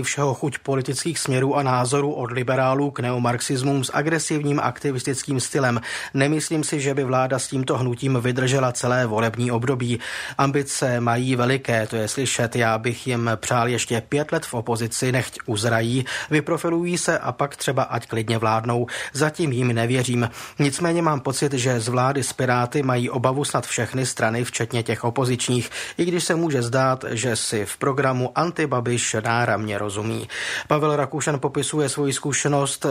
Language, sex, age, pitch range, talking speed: Czech, male, 30-49, 120-145 Hz, 155 wpm